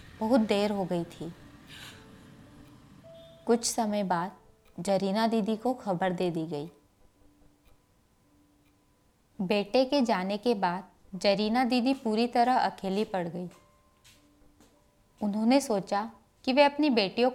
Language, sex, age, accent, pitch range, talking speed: Hindi, female, 20-39, native, 185-245 Hz, 115 wpm